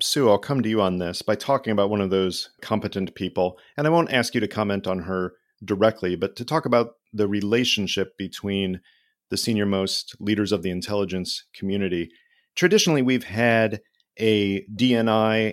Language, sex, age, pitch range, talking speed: English, male, 40-59, 95-120 Hz, 175 wpm